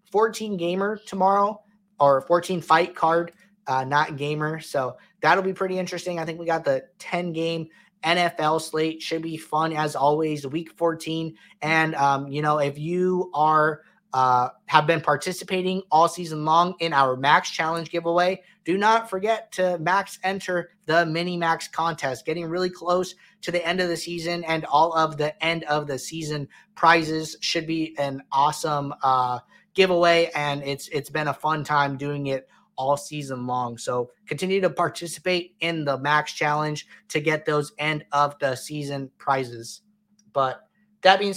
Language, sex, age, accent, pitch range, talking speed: English, male, 20-39, American, 150-175 Hz, 165 wpm